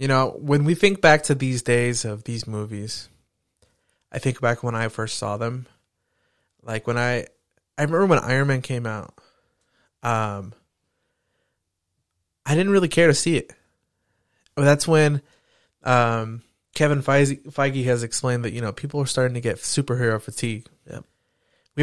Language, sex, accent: English, male, American